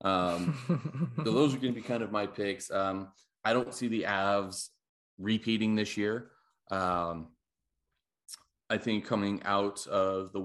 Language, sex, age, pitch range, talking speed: English, male, 30-49, 90-105 Hz, 150 wpm